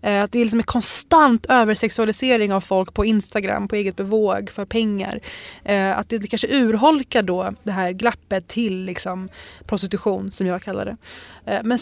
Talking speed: 155 wpm